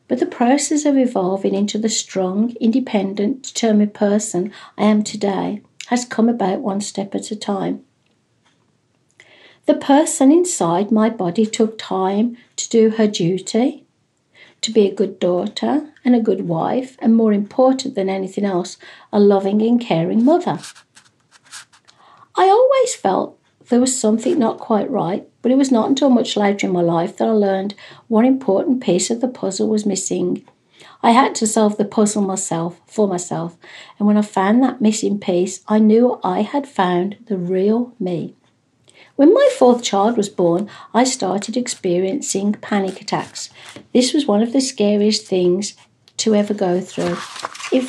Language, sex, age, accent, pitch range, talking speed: English, female, 60-79, British, 195-240 Hz, 165 wpm